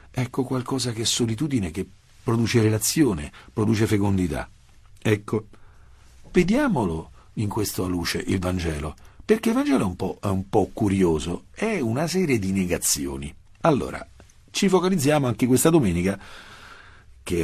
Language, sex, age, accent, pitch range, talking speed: Italian, male, 50-69, native, 90-130 Hz, 135 wpm